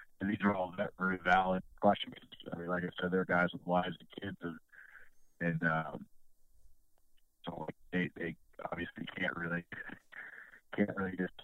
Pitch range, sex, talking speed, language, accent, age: 80-95 Hz, male, 150 wpm, English, American, 30-49